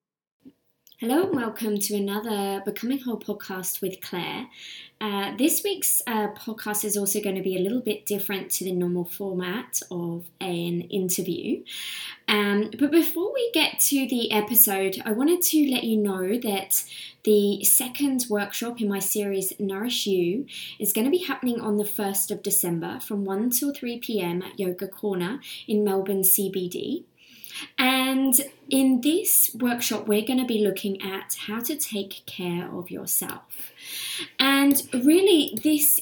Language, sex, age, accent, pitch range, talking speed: English, female, 20-39, British, 195-255 Hz, 155 wpm